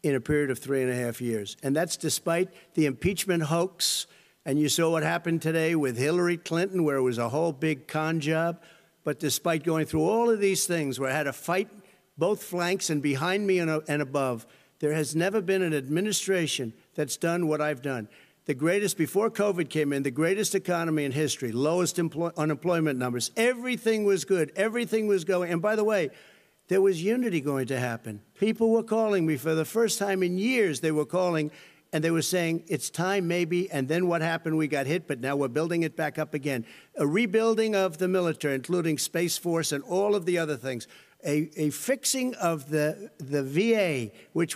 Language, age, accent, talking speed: English, 60-79, American, 205 wpm